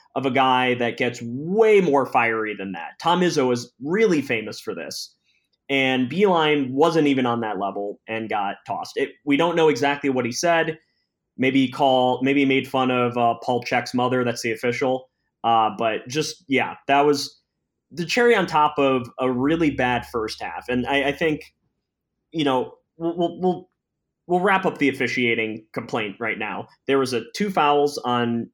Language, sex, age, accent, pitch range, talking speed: English, male, 20-39, American, 120-150 Hz, 185 wpm